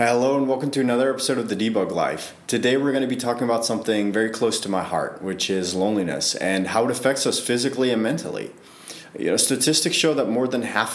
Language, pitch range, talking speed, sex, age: English, 100-135 Hz, 220 wpm, male, 30-49